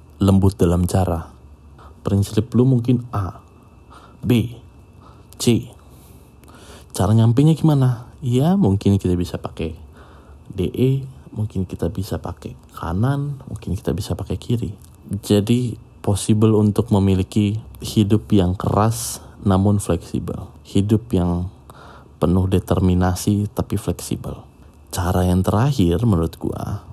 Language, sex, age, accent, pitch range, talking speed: Indonesian, male, 20-39, native, 90-110 Hz, 105 wpm